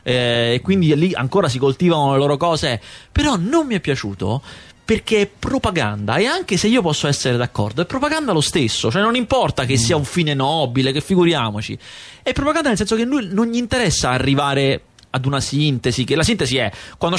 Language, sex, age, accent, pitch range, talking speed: Italian, male, 30-49, native, 130-220 Hz, 205 wpm